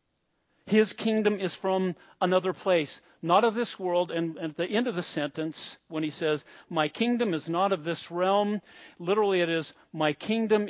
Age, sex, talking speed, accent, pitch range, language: 50-69, male, 180 wpm, American, 160-205 Hz, English